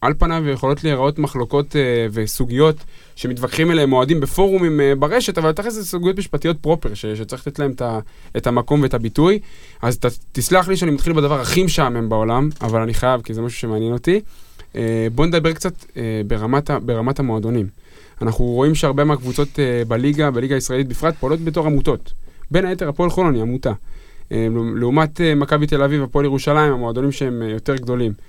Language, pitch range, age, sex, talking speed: Hebrew, 120-160 Hz, 20-39, male, 160 wpm